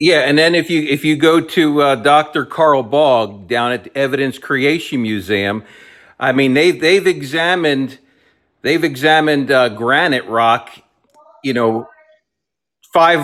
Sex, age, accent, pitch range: male, 50-69, American, 120-160 Hz